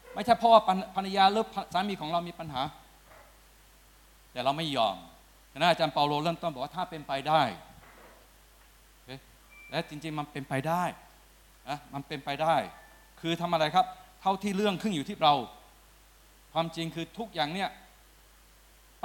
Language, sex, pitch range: Thai, male, 145-185 Hz